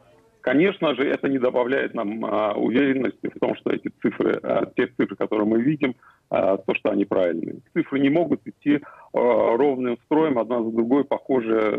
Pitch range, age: 110-140 Hz, 40-59